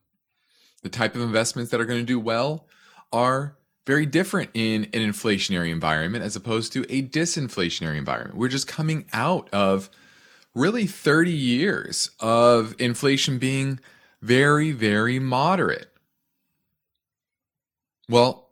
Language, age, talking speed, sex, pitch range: English, 30-49, 125 wpm, male, 105-145 Hz